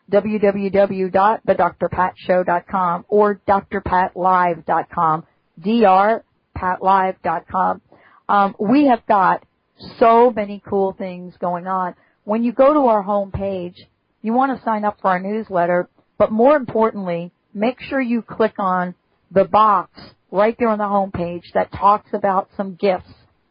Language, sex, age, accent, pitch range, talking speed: English, female, 50-69, American, 185-220 Hz, 120 wpm